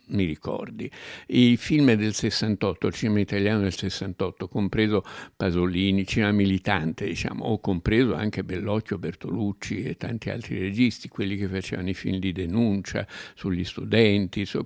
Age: 60-79